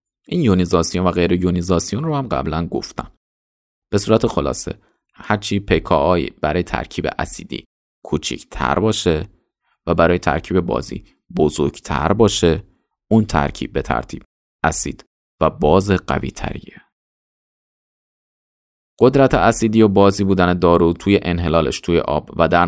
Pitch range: 80-100 Hz